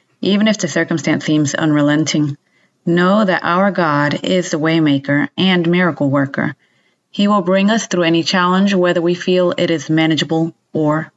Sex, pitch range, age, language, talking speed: female, 155-180 Hz, 30-49, English, 165 wpm